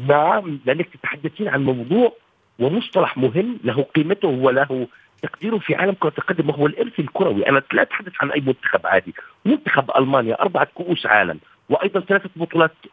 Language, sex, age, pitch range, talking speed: Arabic, male, 50-69, 145-200 Hz, 160 wpm